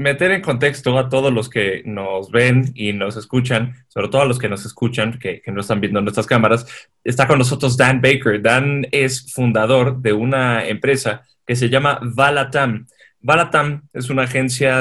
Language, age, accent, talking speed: Spanish, 20-39, Mexican, 185 wpm